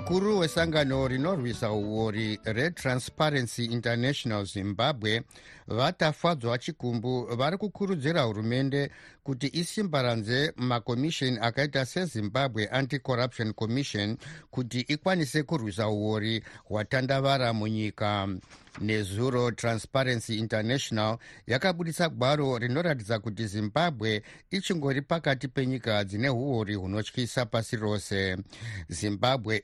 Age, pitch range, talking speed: 60-79, 110-135 Hz, 90 wpm